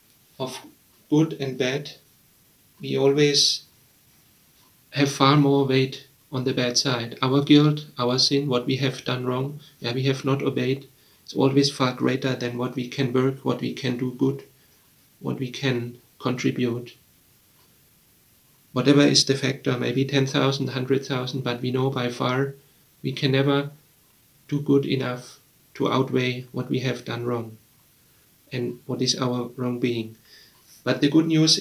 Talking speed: 150 wpm